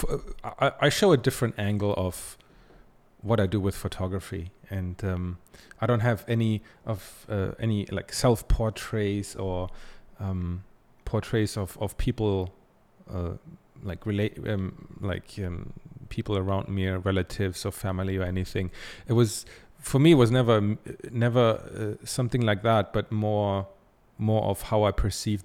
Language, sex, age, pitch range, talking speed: English, male, 30-49, 95-120 Hz, 145 wpm